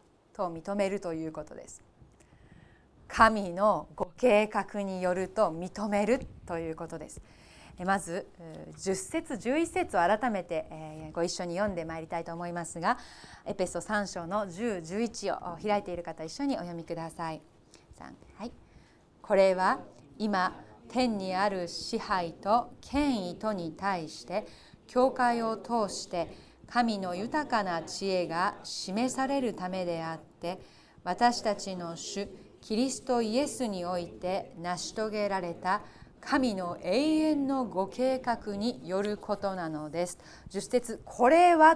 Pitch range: 175-255 Hz